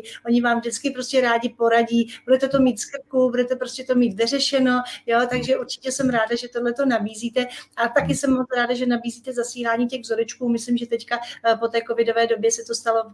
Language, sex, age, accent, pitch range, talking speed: Czech, female, 40-59, native, 215-240 Hz, 195 wpm